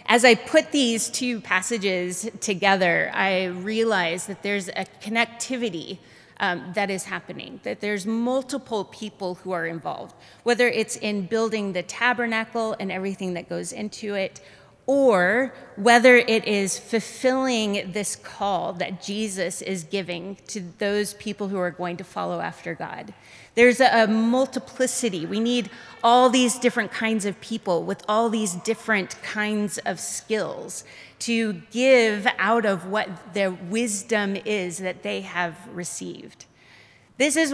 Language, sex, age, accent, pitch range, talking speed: English, female, 30-49, American, 190-235 Hz, 140 wpm